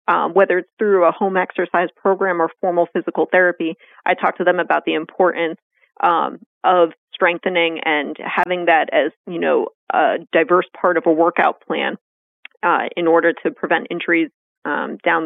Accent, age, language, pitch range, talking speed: American, 30-49, English, 165-190 Hz, 170 wpm